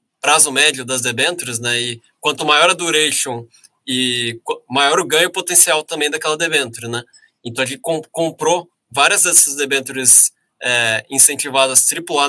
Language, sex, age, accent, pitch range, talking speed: Portuguese, male, 20-39, Brazilian, 130-165 Hz, 150 wpm